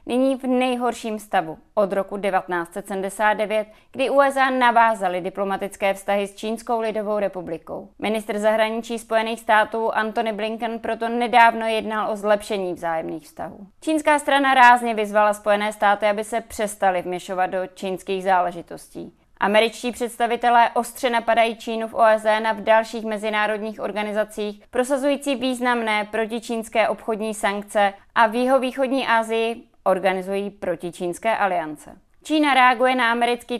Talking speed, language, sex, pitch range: 125 wpm, Czech, female, 200-235 Hz